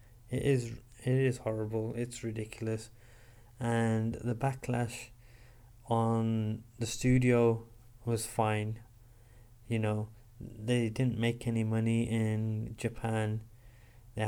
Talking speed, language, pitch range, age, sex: 105 wpm, English, 115-120 Hz, 20-39, male